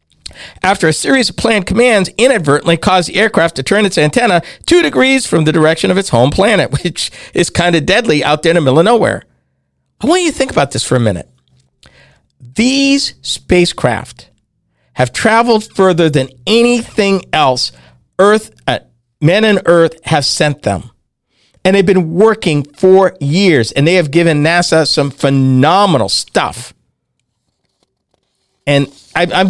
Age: 50-69